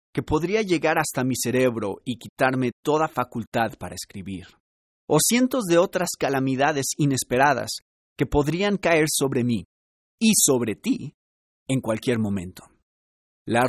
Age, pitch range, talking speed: 40-59, 110-165 Hz, 130 wpm